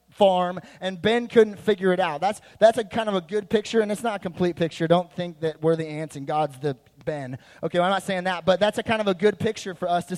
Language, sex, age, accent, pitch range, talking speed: English, male, 20-39, American, 145-185 Hz, 275 wpm